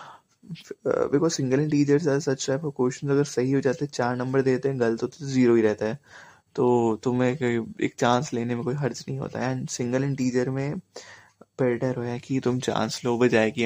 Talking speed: 210 wpm